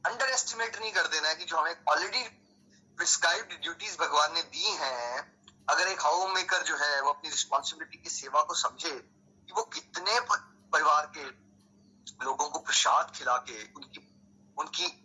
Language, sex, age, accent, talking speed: Hindi, male, 30-49, native, 115 wpm